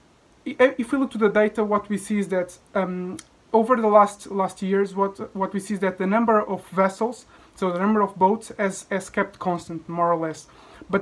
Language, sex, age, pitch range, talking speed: English, male, 20-39, 190-215 Hz, 220 wpm